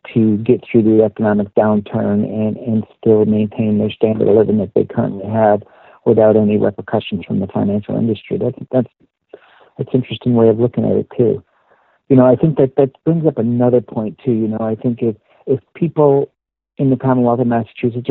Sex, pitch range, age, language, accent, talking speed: male, 110-125 Hz, 60-79, English, American, 190 wpm